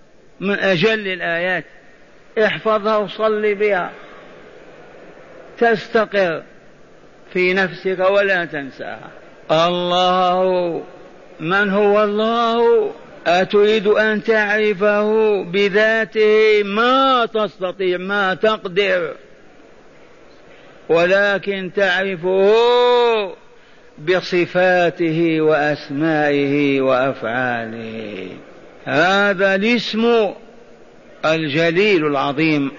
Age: 50-69